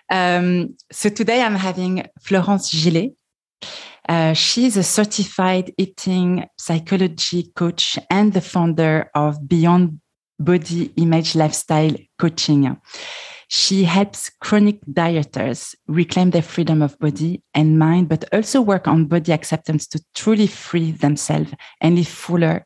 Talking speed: 120 wpm